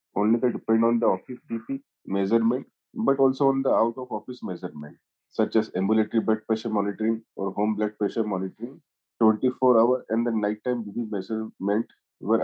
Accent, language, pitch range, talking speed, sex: Indian, English, 105-120 Hz, 160 wpm, male